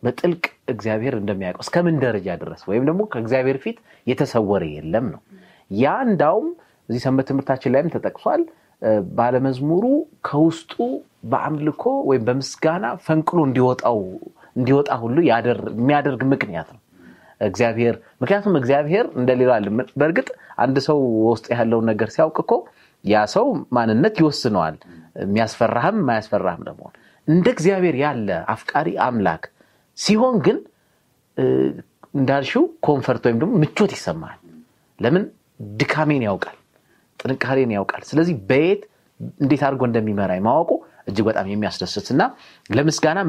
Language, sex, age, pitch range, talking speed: Amharic, male, 30-49, 115-155 Hz, 100 wpm